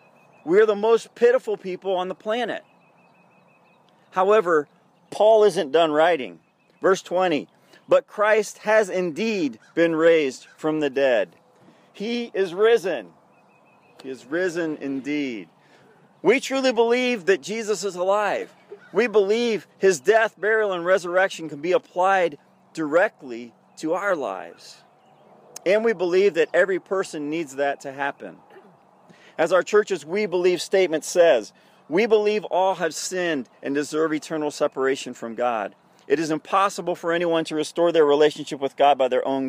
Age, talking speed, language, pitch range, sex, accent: 40-59, 145 wpm, English, 150-205 Hz, male, American